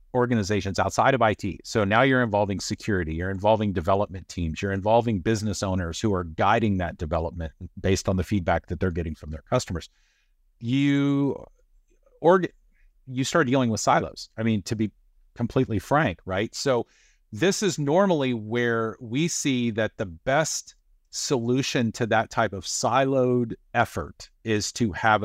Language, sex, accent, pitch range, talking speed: English, male, American, 90-120 Hz, 155 wpm